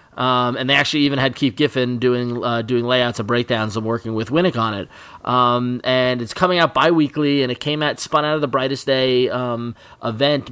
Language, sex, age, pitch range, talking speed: English, male, 20-39, 110-125 Hz, 220 wpm